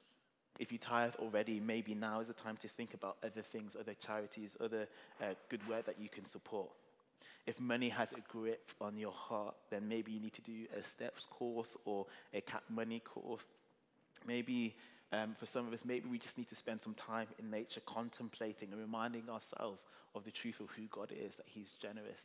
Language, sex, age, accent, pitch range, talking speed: English, male, 20-39, British, 105-115 Hz, 205 wpm